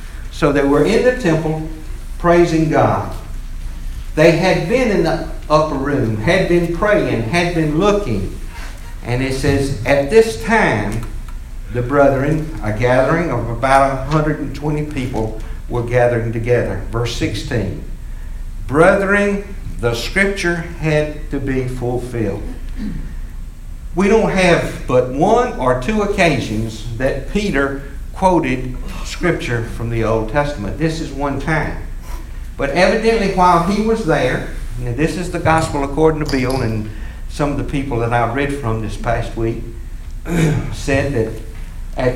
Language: English